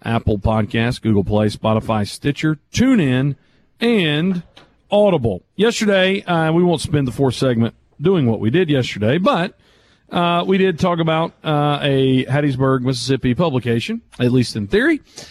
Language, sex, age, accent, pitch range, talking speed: English, male, 40-59, American, 130-175 Hz, 140 wpm